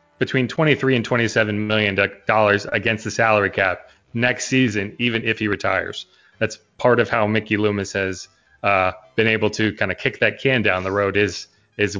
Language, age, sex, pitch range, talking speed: Portuguese, 30-49, male, 100-120 Hz, 185 wpm